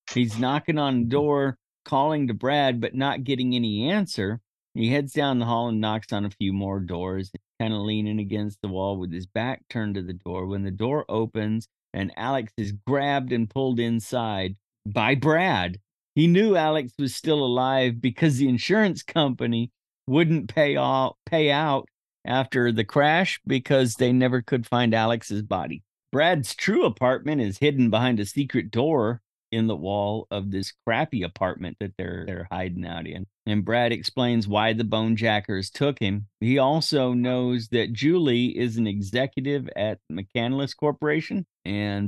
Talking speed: 170 wpm